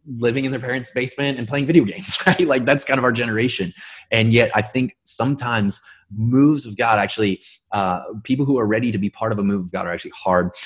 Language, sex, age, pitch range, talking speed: English, male, 20-39, 100-120 Hz, 230 wpm